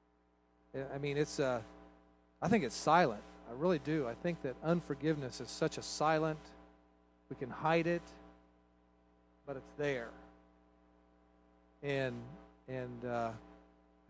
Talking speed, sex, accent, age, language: 125 wpm, male, American, 40-59, English